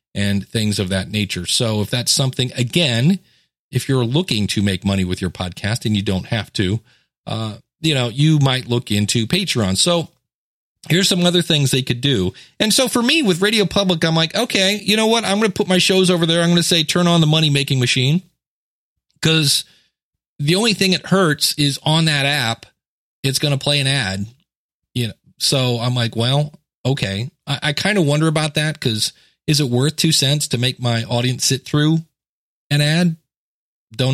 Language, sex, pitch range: English, male, 115-165 Hz